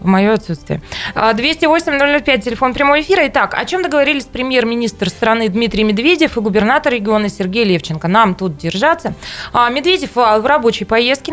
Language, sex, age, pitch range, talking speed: Russian, female, 20-39, 200-260 Hz, 145 wpm